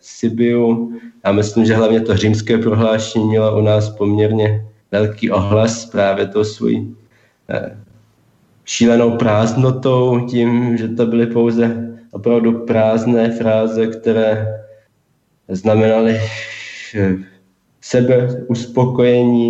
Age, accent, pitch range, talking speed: 20-39, native, 100-115 Hz, 100 wpm